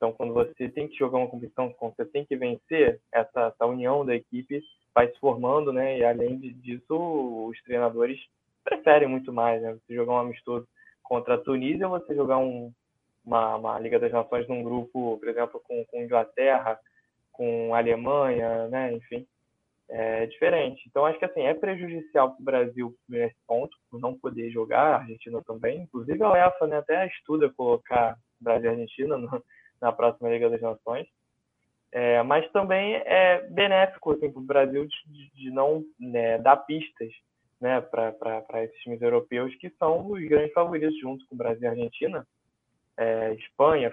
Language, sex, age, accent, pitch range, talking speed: Portuguese, male, 20-39, Brazilian, 120-155 Hz, 175 wpm